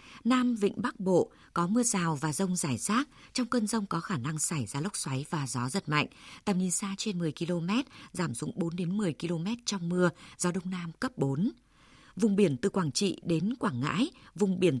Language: Vietnamese